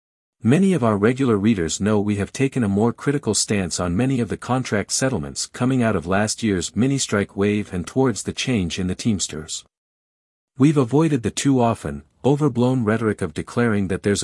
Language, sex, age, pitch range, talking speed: English, male, 50-69, 95-125 Hz, 180 wpm